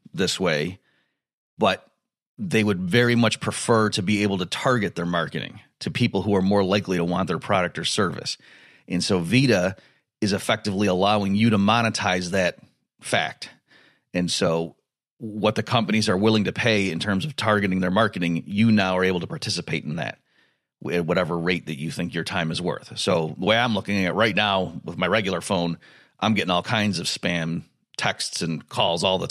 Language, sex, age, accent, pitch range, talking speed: English, male, 30-49, American, 90-110 Hz, 195 wpm